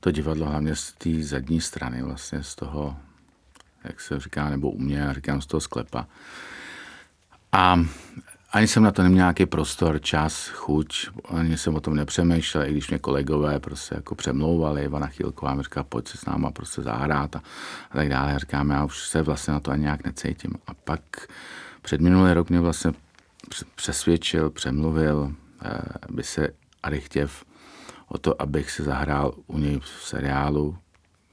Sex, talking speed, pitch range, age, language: male, 170 wpm, 70-85 Hz, 50-69, Czech